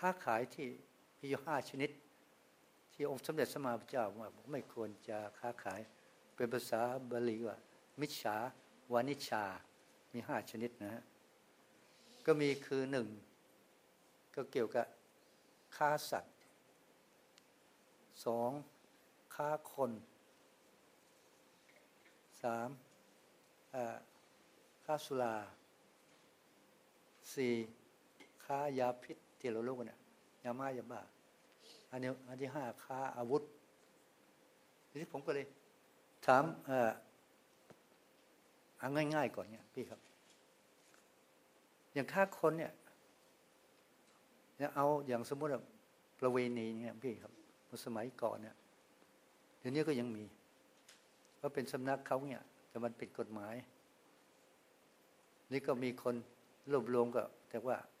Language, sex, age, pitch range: English, male, 60-79, 115-145 Hz